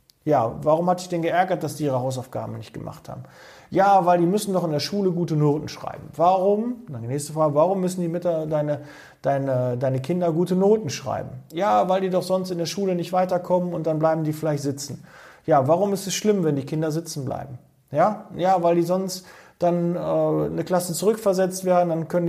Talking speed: 210 wpm